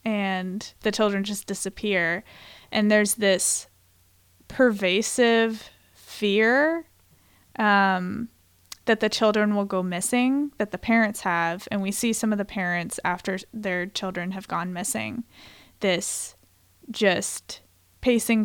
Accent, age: American, 20-39